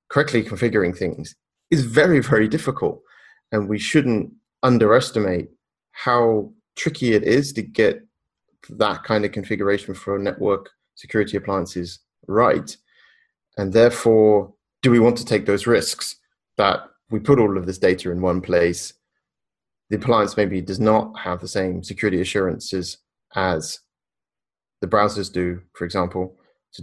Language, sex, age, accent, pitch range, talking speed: English, male, 30-49, British, 95-115 Hz, 140 wpm